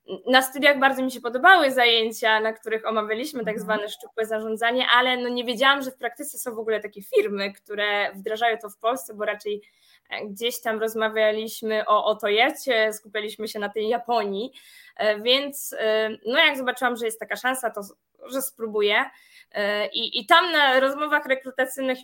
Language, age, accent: Polish, 20-39, native